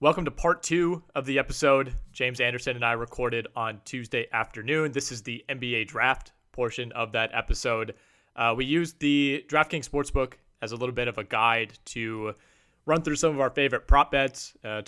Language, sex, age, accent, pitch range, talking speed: English, male, 30-49, American, 110-135 Hz, 190 wpm